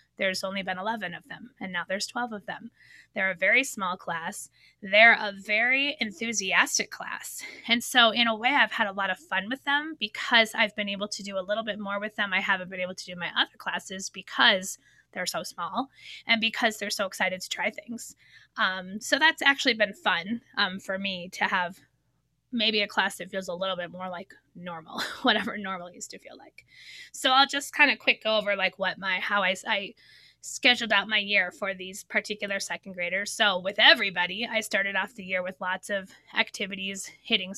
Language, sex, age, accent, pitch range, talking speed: English, female, 20-39, American, 190-230 Hz, 210 wpm